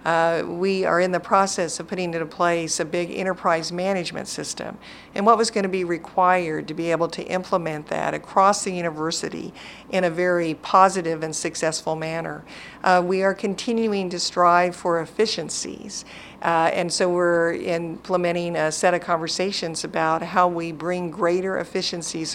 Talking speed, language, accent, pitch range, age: 165 wpm, English, American, 165-190 Hz, 50-69